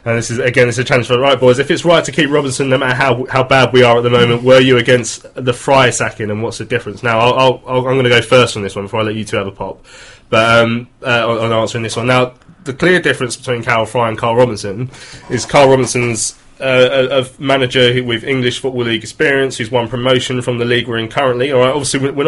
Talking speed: 265 wpm